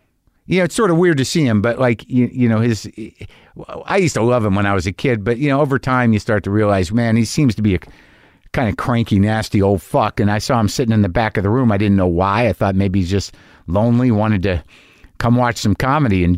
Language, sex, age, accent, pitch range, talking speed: English, male, 50-69, American, 100-135 Hz, 275 wpm